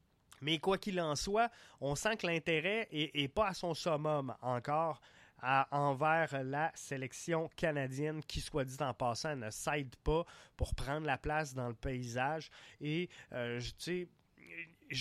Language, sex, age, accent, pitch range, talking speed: French, male, 20-39, Canadian, 130-160 Hz, 155 wpm